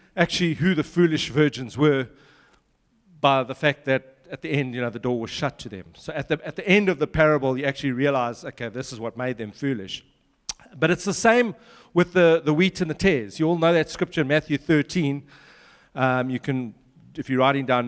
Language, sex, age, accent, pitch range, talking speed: English, male, 40-59, South African, 140-180 Hz, 220 wpm